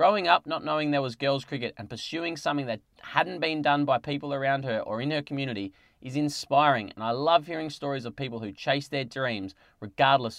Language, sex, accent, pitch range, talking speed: English, male, Australian, 115-155 Hz, 215 wpm